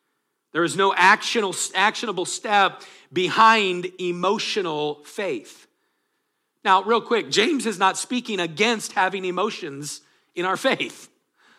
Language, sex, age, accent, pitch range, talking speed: English, male, 40-59, American, 155-205 Hz, 110 wpm